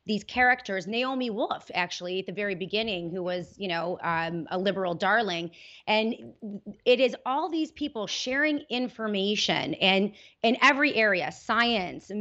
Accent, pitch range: American, 190-230 Hz